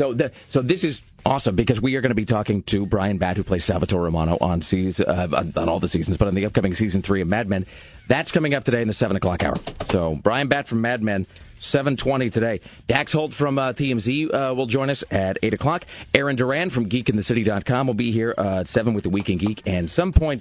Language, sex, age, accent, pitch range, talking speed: English, male, 40-59, American, 95-135 Hz, 245 wpm